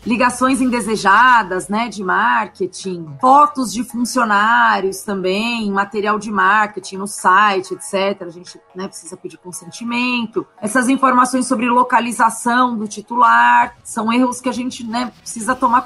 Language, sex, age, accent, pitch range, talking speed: Portuguese, female, 30-49, Brazilian, 200-240 Hz, 130 wpm